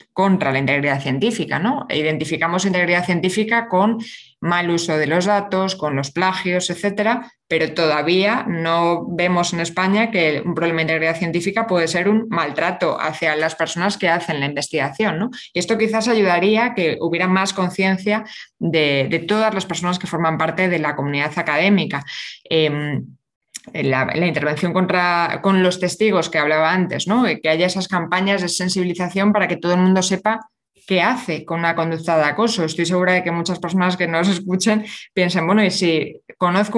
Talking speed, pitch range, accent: 175 wpm, 165-200 Hz, Spanish